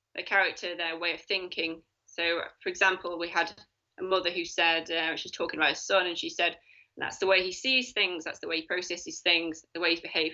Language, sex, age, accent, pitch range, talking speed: English, female, 20-39, British, 165-195 Hz, 240 wpm